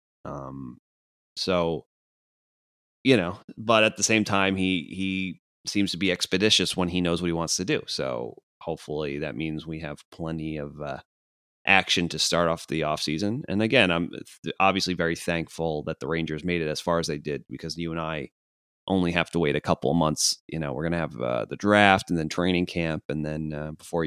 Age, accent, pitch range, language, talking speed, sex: 30-49, American, 75-95 Hz, English, 210 wpm, male